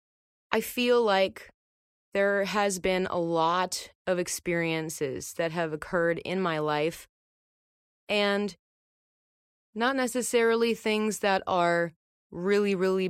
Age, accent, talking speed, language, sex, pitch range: 30-49, American, 110 wpm, English, female, 165-205 Hz